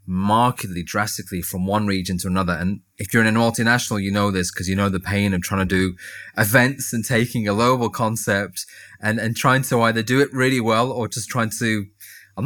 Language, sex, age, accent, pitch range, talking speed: English, male, 20-39, British, 95-110 Hz, 215 wpm